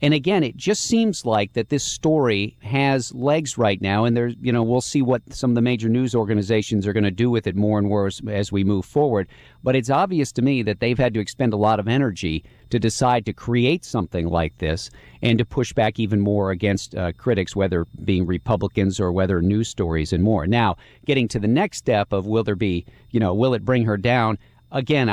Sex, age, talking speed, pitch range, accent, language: male, 50-69, 230 wpm, 100-125 Hz, American, English